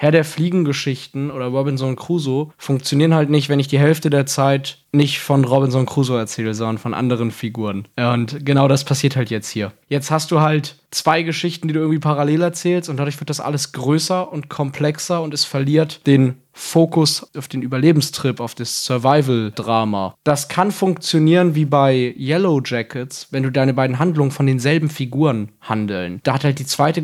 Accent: German